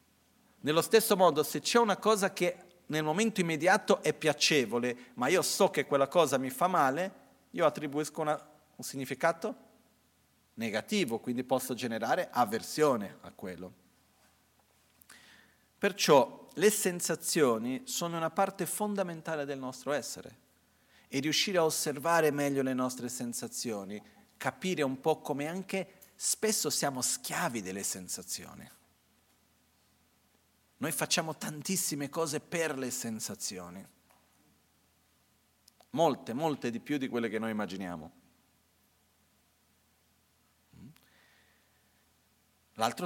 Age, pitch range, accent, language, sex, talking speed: 40-59, 120-165 Hz, native, Italian, male, 110 wpm